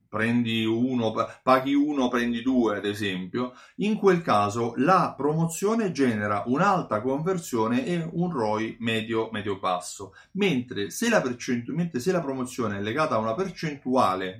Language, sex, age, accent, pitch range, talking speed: Italian, male, 30-49, native, 110-145 Hz, 125 wpm